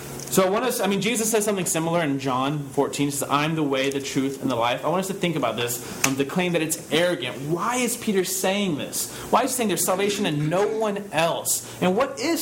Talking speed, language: 260 wpm, English